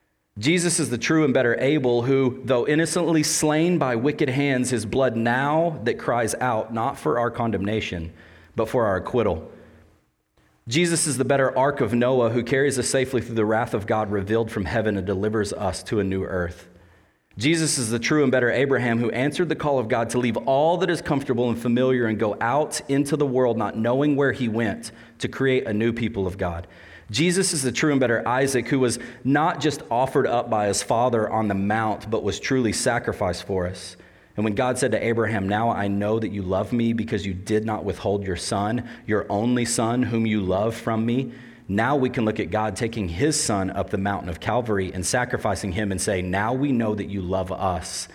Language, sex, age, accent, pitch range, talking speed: English, male, 30-49, American, 100-130 Hz, 215 wpm